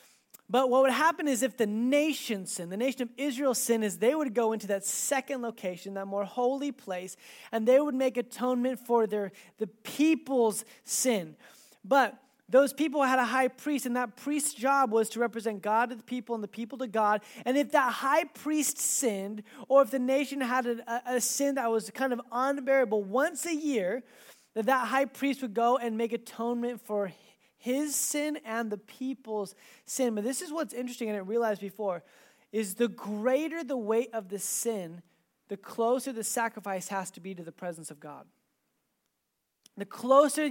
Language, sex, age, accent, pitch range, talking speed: English, male, 20-39, American, 210-265 Hz, 190 wpm